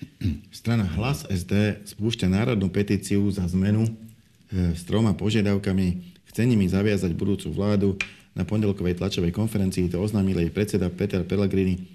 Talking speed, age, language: 125 wpm, 40-59, Slovak